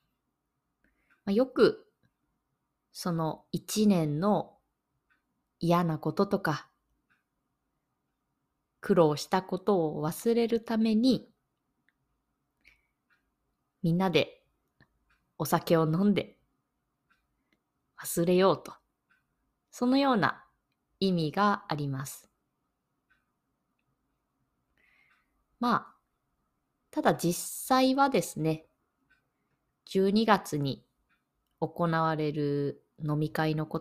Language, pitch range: Japanese, 155-210 Hz